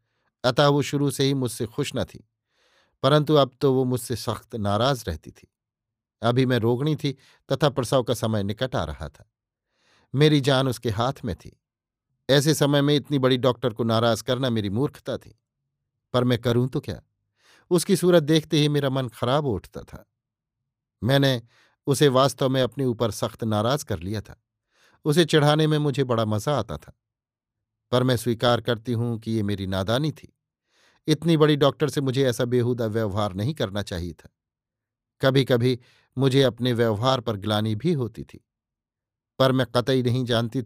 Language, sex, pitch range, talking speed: Hindi, male, 115-140 Hz, 175 wpm